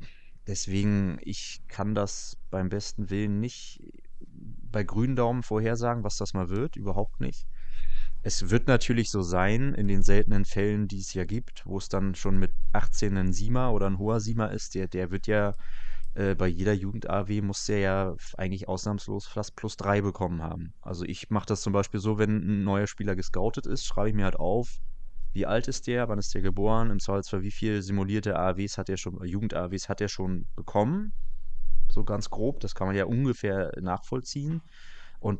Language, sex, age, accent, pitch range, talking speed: German, male, 20-39, German, 95-115 Hz, 190 wpm